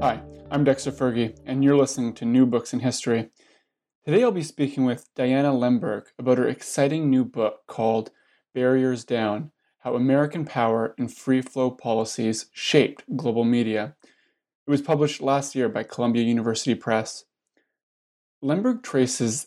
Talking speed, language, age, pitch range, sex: 150 wpm, English, 20-39, 115-140 Hz, male